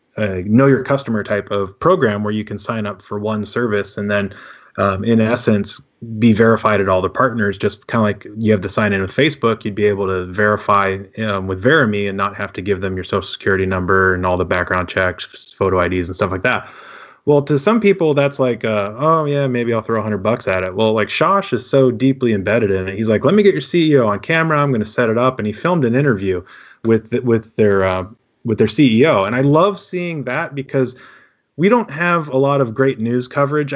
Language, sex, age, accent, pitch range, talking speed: English, male, 30-49, American, 100-125 Hz, 240 wpm